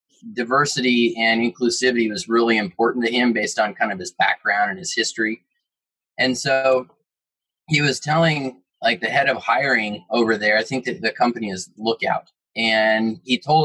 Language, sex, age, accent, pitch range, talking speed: English, male, 20-39, American, 115-150 Hz, 170 wpm